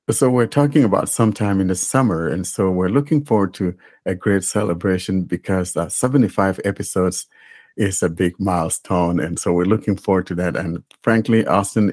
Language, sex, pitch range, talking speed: English, male, 90-115 Hz, 175 wpm